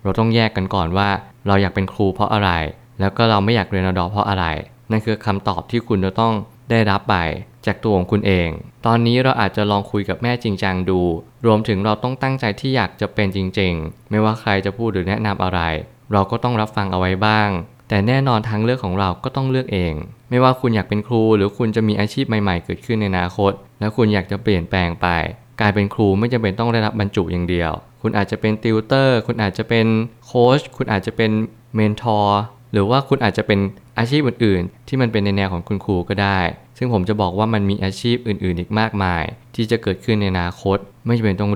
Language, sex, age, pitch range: Thai, male, 20-39, 95-115 Hz